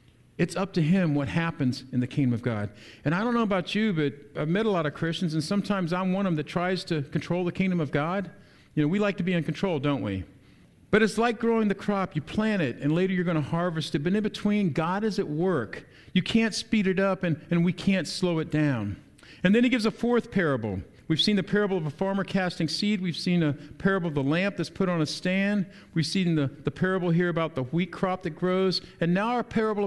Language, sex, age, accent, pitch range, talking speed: English, male, 50-69, American, 155-200 Hz, 255 wpm